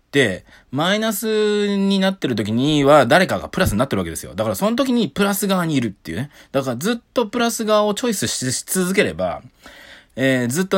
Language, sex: Japanese, male